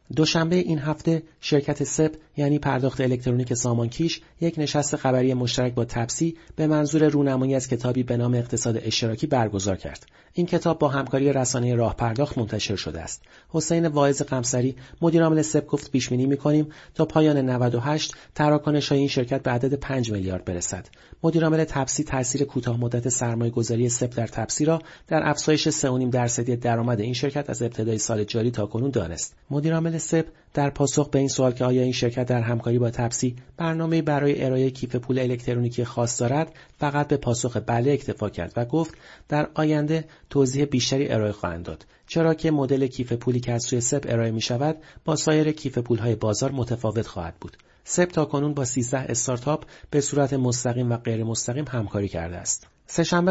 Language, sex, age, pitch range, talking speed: Persian, male, 40-59, 120-150 Hz, 170 wpm